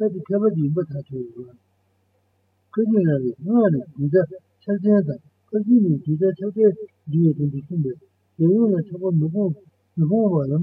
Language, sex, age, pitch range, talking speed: Italian, male, 60-79, 130-185 Hz, 95 wpm